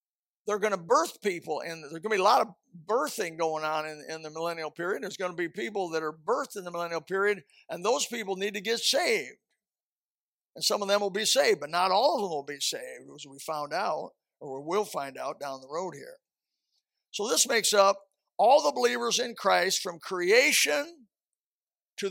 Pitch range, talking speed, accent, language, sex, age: 165-225 Hz, 215 wpm, American, English, male, 50-69